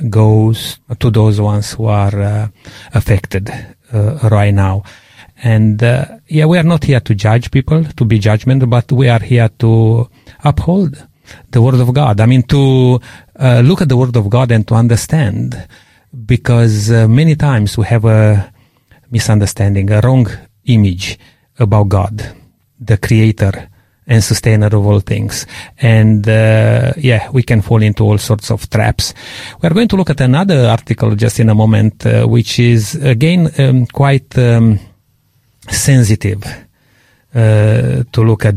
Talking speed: 160 wpm